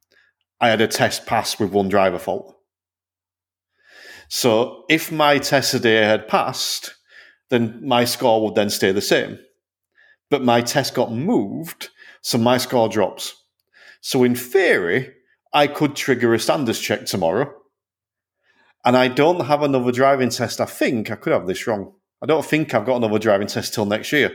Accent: British